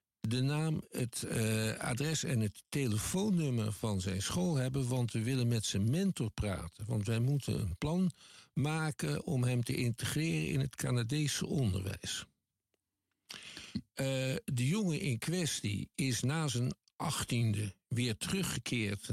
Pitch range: 105-130 Hz